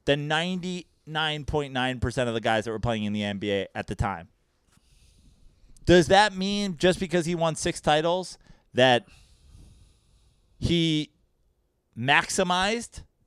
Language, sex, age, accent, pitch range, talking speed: English, male, 30-49, American, 110-170 Hz, 120 wpm